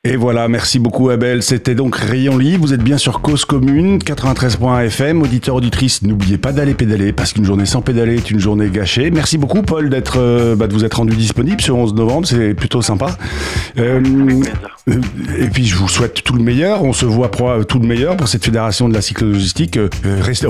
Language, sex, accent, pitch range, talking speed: French, male, French, 100-130 Hz, 210 wpm